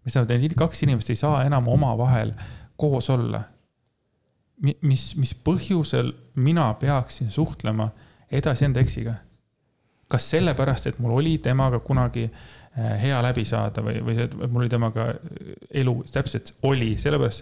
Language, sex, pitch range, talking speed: English, male, 110-130 Hz, 140 wpm